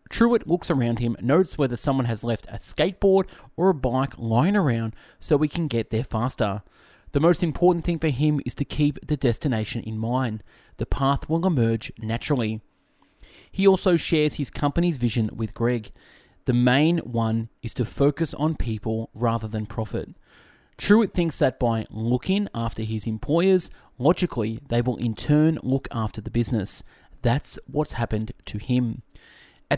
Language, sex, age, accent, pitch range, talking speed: English, male, 20-39, Australian, 115-150 Hz, 165 wpm